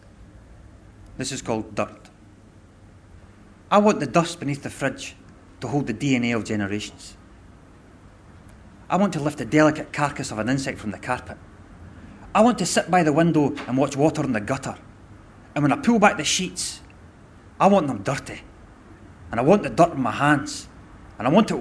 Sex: male